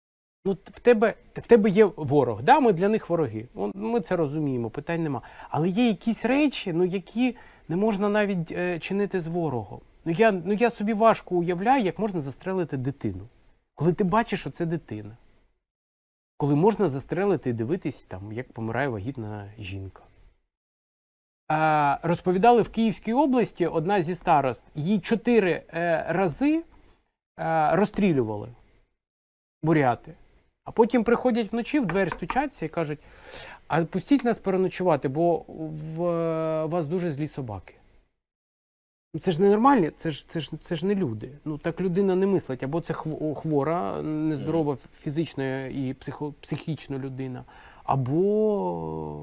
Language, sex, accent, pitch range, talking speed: Ukrainian, male, native, 145-215 Hz, 145 wpm